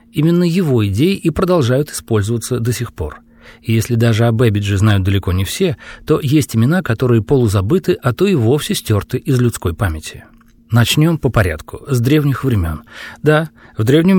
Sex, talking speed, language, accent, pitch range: male, 170 wpm, Russian, native, 110-155 Hz